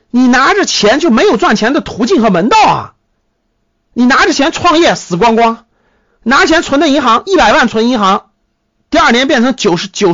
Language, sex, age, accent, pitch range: Chinese, male, 50-69, native, 200-320 Hz